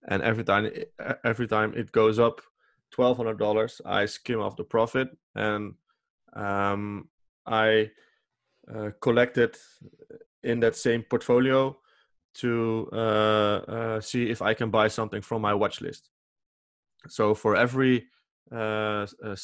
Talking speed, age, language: 130 wpm, 20-39, English